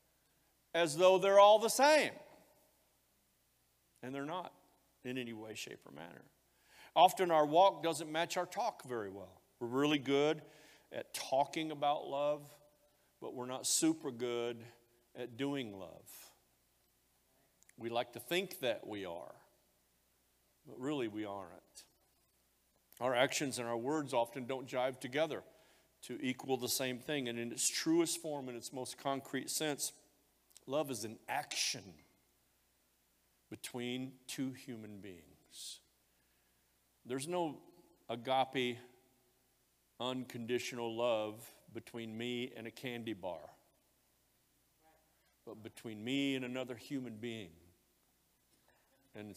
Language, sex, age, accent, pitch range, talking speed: English, male, 50-69, American, 110-145 Hz, 125 wpm